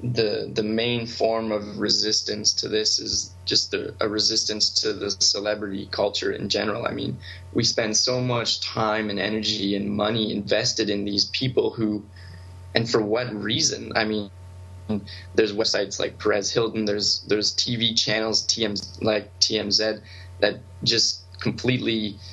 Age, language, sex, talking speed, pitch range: 20-39, English, male, 150 wpm, 90-110 Hz